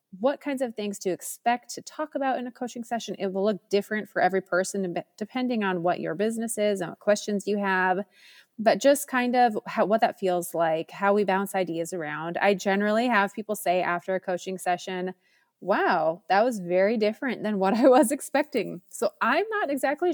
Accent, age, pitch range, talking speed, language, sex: American, 30-49, 185-230 Hz, 200 wpm, English, female